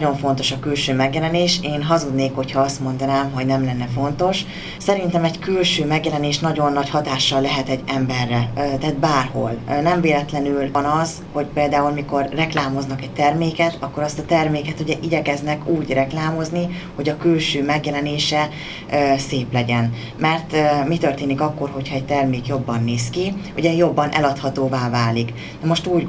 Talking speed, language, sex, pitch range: 155 wpm, Hungarian, female, 135-160 Hz